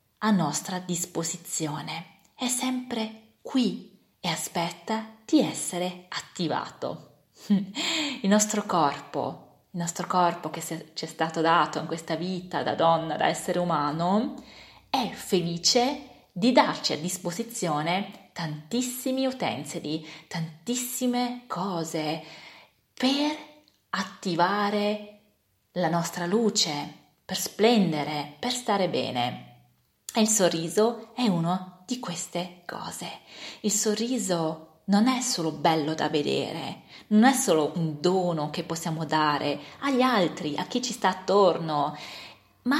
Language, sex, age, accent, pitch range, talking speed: Italian, female, 20-39, native, 160-220 Hz, 110 wpm